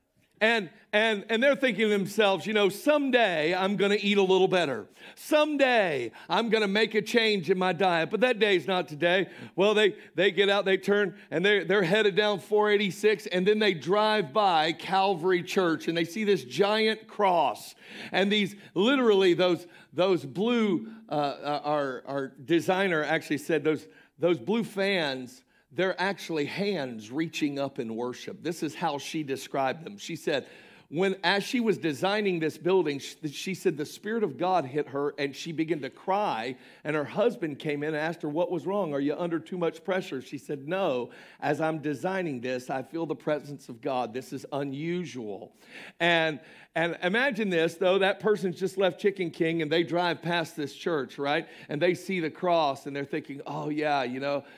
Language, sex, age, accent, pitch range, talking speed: English, male, 50-69, American, 155-205 Hz, 190 wpm